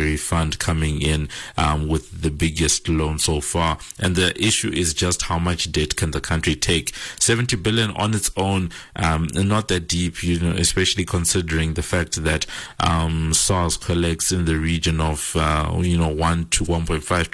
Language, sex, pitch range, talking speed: English, male, 80-90 Hz, 180 wpm